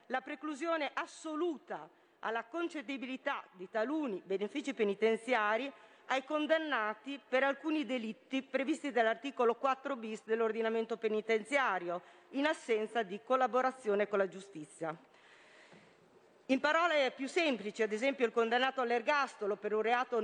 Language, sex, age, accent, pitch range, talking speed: Italian, female, 40-59, native, 220-280 Hz, 115 wpm